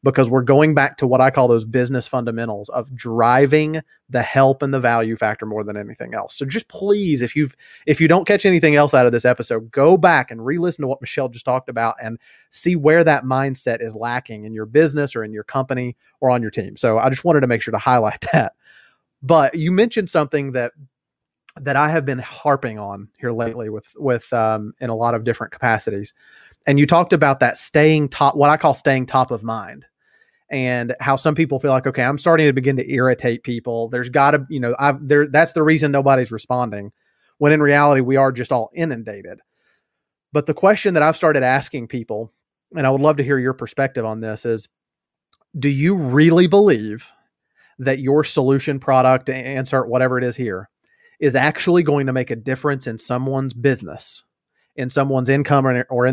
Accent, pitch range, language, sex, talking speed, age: American, 120-150 Hz, English, male, 205 wpm, 30-49